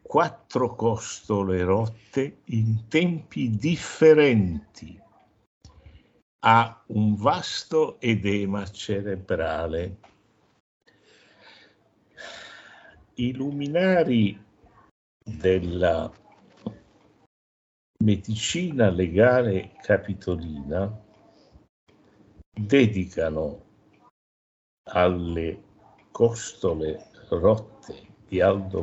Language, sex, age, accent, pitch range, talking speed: Italian, male, 60-79, native, 95-125 Hz, 45 wpm